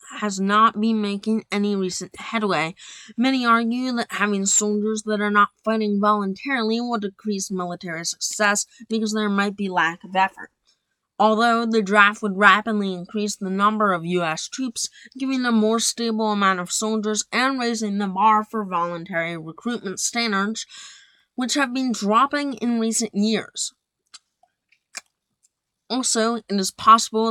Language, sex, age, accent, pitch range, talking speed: English, female, 20-39, American, 195-230 Hz, 145 wpm